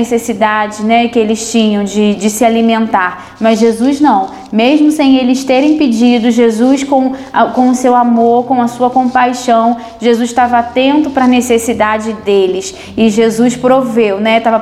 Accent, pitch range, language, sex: Brazilian, 225-255 Hz, Portuguese, female